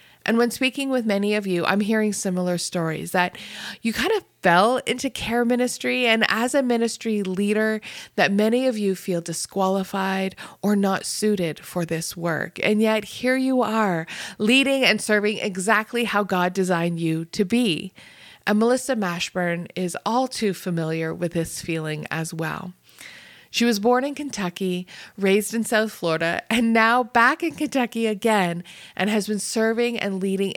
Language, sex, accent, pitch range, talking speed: English, female, American, 180-225 Hz, 165 wpm